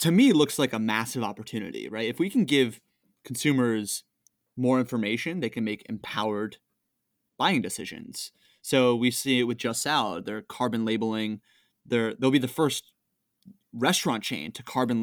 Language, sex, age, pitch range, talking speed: English, male, 20-39, 115-135 Hz, 165 wpm